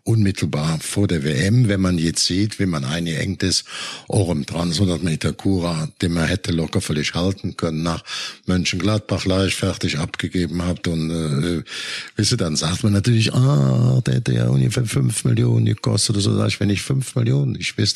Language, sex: German, male